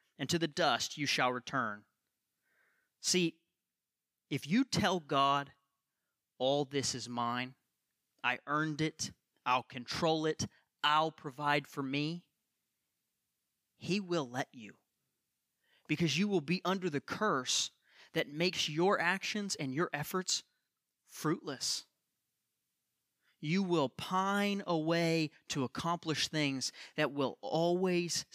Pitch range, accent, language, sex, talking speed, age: 135-170 Hz, American, English, male, 115 wpm, 30-49